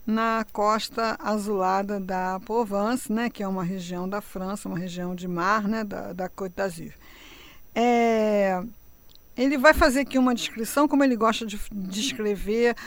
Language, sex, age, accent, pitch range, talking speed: Portuguese, female, 50-69, Brazilian, 190-230 Hz, 150 wpm